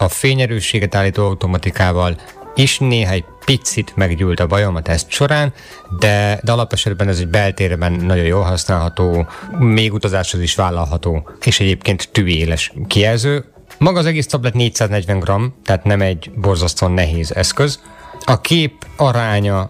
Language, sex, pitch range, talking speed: Hungarian, male, 90-115 Hz, 135 wpm